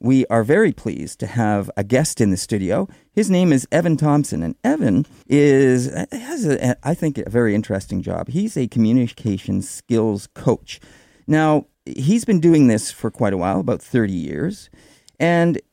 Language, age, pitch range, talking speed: English, 40-59, 110-150 Hz, 170 wpm